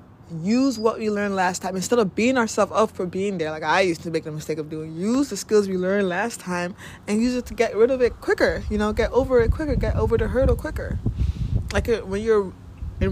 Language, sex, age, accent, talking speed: English, female, 20-39, American, 245 wpm